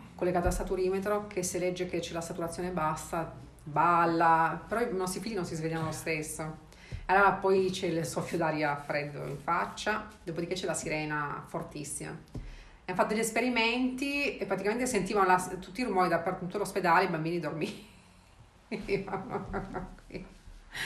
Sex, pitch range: female, 165-200 Hz